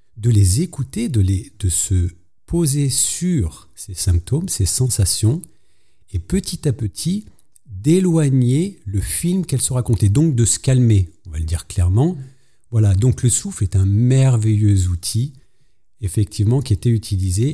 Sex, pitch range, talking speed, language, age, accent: male, 95-120 Hz, 145 wpm, French, 50-69, French